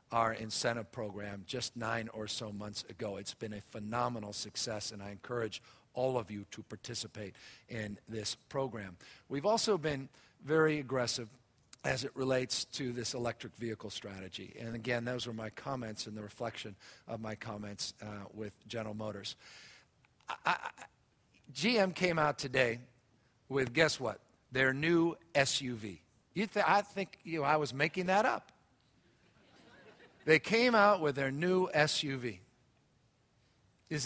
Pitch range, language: 110-145 Hz, English